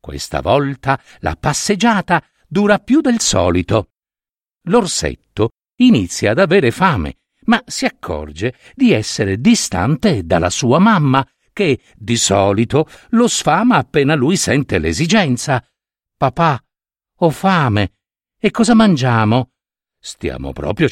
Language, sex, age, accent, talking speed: Italian, male, 60-79, native, 110 wpm